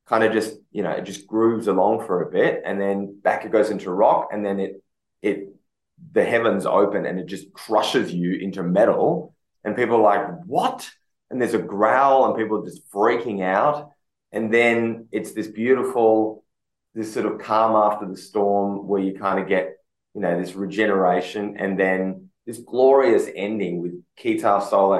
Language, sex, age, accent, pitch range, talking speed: English, male, 20-39, Australian, 95-115 Hz, 185 wpm